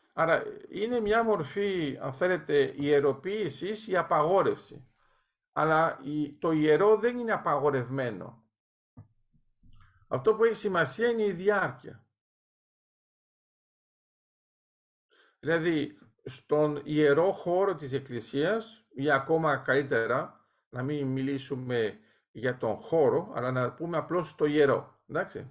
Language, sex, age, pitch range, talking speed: Greek, male, 50-69, 140-200 Hz, 105 wpm